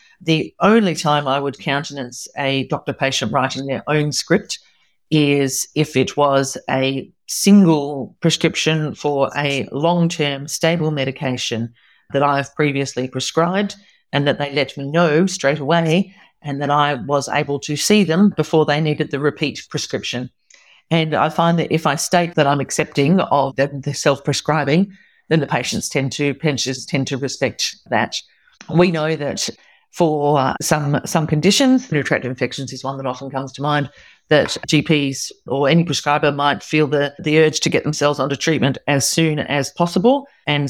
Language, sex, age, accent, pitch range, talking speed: English, female, 40-59, Australian, 140-165 Hz, 160 wpm